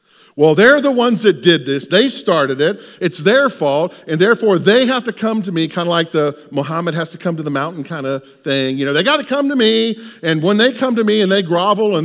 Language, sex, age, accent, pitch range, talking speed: English, male, 50-69, American, 145-210 Hz, 265 wpm